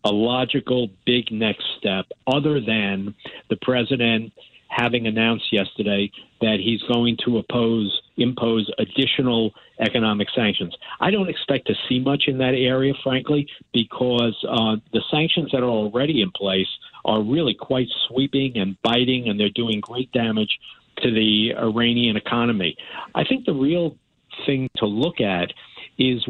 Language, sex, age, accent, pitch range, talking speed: English, male, 50-69, American, 110-130 Hz, 145 wpm